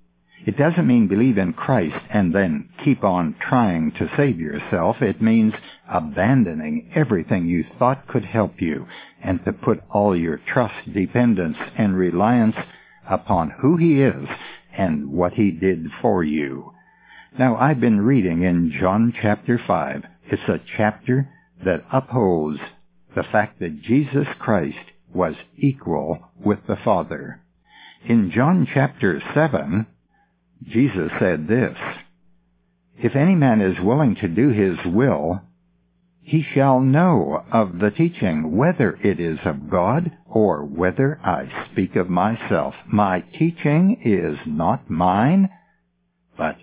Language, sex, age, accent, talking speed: English, male, 60-79, American, 135 wpm